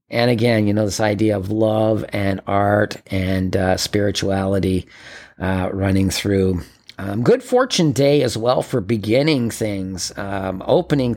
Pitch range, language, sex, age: 100-135 Hz, English, male, 40-59